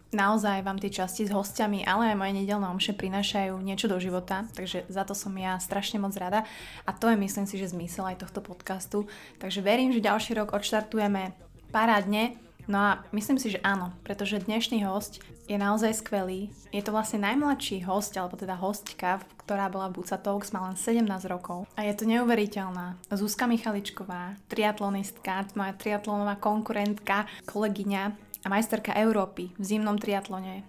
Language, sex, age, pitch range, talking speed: Slovak, female, 20-39, 195-215 Hz, 165 wpm